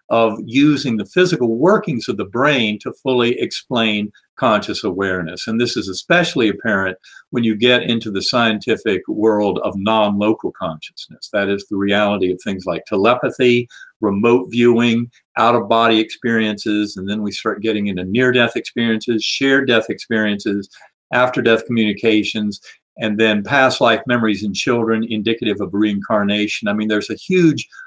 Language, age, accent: English, 50-69, American